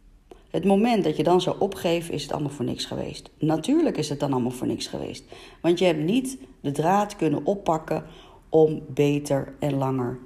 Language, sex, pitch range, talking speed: Dutch, female, 140-195 Hz, 195 wpm